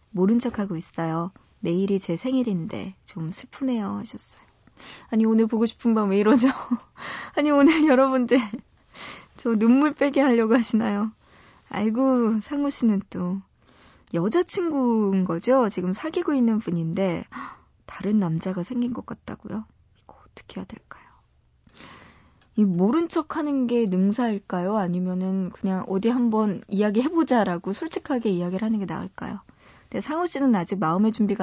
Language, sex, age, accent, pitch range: Korean, female, 20-39, native, 190-245 Hz